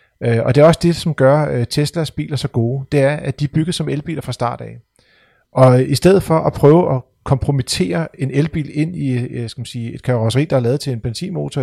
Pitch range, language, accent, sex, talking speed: 120-150 Hz, Danish, native, male, 245 wpm